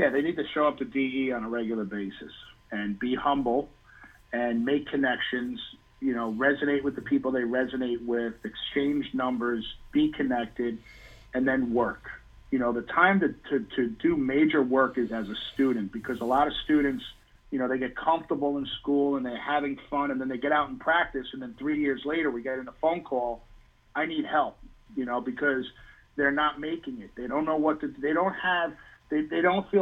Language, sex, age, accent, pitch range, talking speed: English, male, 50-69, American, 125-160 Hz, 210 wpm